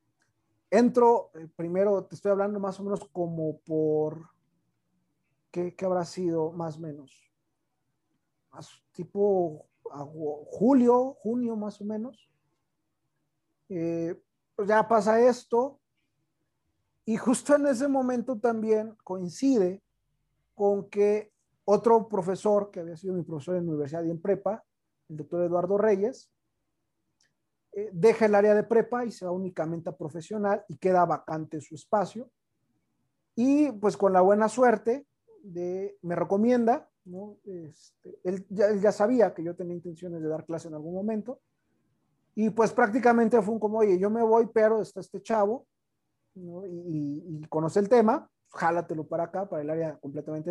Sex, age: male, 40-59